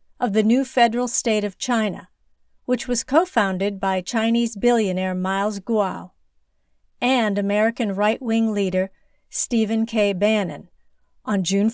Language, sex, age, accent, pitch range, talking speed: English, female, 50-69, American, 190-245 Hz, 125 wpm